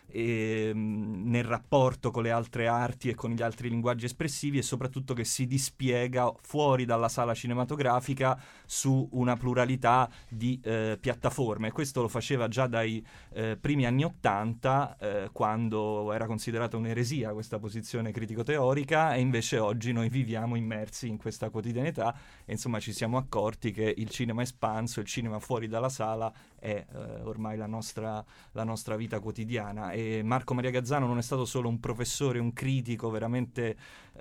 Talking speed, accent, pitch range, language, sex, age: 155 wpm, native, 110-130 Hz, Italian, male, 30-49